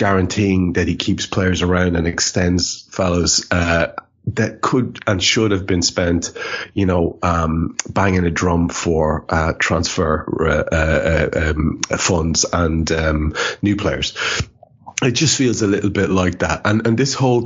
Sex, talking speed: male, 160 wpm